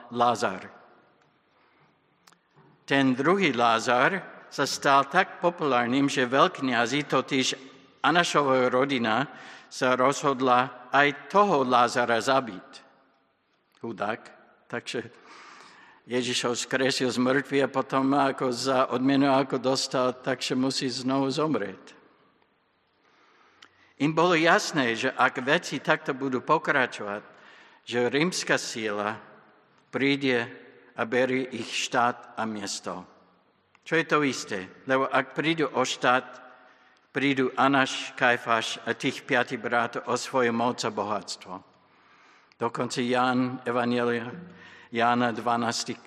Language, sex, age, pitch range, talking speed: Slovak, male, 60-79, 120-140 Hz, 105 wpm